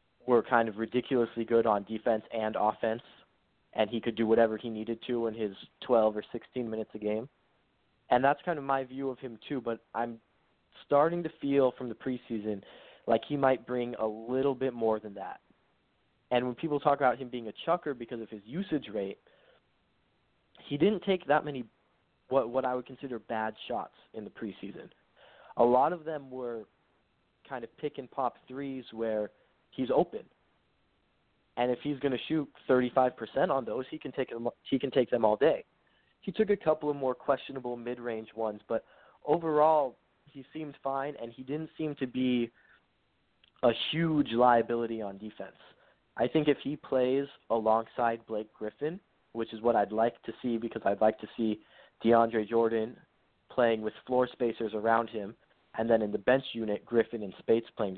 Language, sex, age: English, male, 20-39